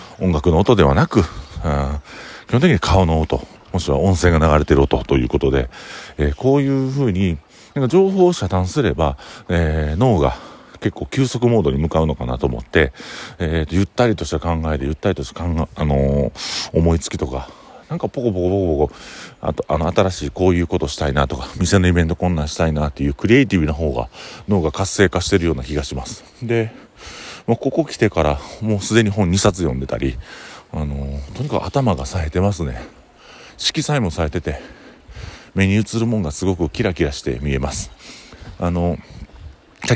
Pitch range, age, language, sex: 75-100 Hz, 40-59, Japanese, male